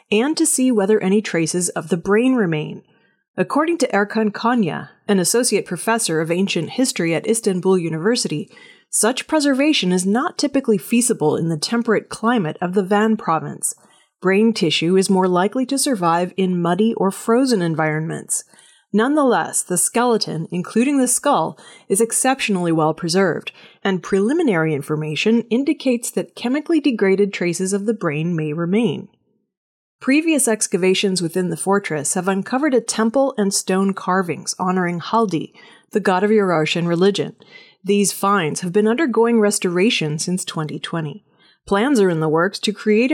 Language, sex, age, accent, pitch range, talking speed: English, female, 30-49, American, 170-230 Hz, 145 wpm